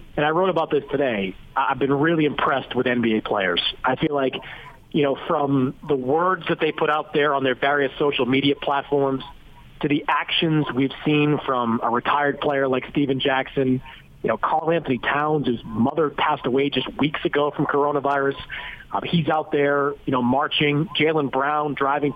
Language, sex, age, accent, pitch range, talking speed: English, male, 40-59, American, 130-150 Hz, 185 wpm